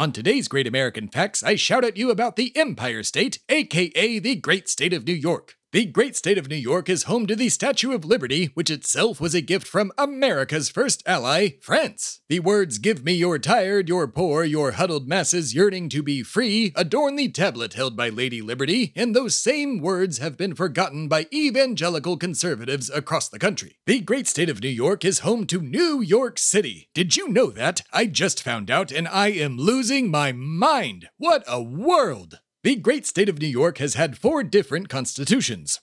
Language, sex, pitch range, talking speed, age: English, male, 140-215 Hz, 200 wpm, 30-49